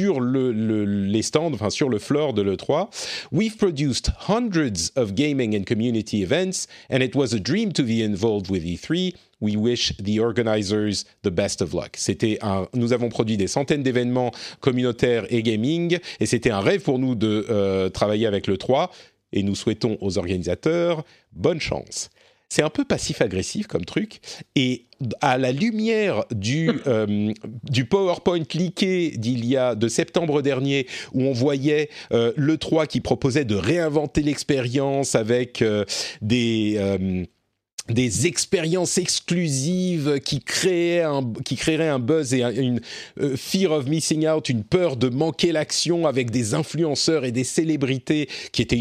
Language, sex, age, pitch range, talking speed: French, male, 40-59, 115-160 Hz, 160 wpm